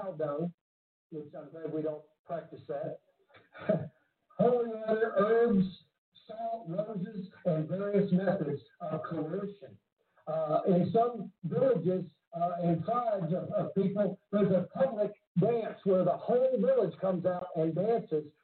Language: English